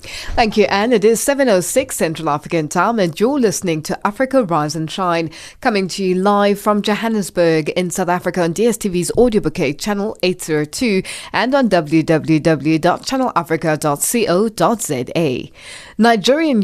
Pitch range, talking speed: 170-230 Hz, 145 wpm